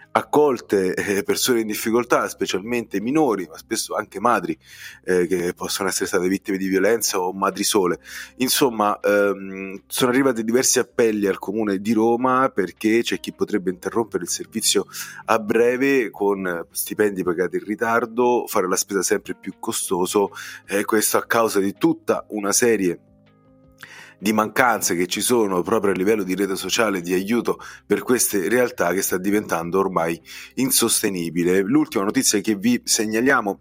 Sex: male